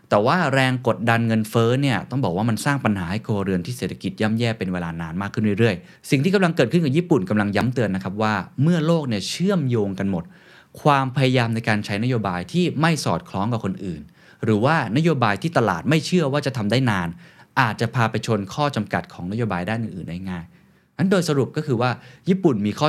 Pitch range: 95-135 Hz